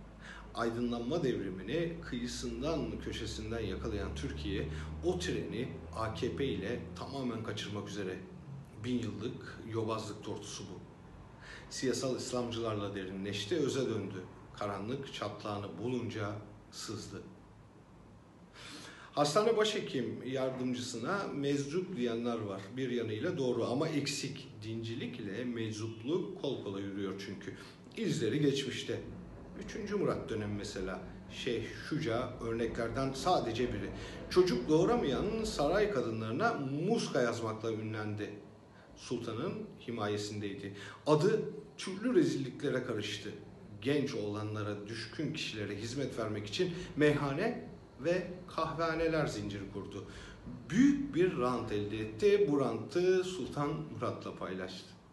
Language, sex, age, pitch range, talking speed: German, male, 50-69, 105-140 Hz, 100 wpm